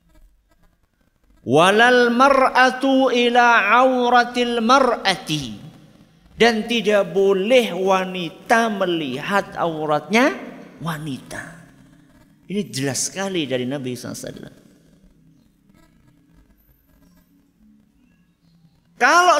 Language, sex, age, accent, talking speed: Indonesian, male, 50-69, native, 60 wpm